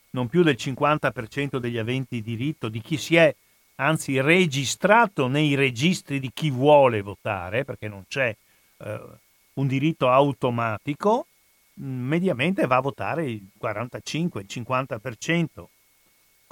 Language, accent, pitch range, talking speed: Italian, native, 125-160 Hz, 120 wpm